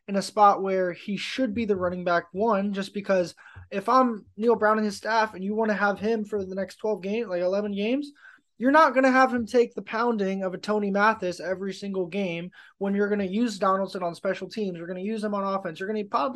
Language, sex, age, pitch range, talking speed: English, male, 20-39, 190-235 Hz, 250 wpm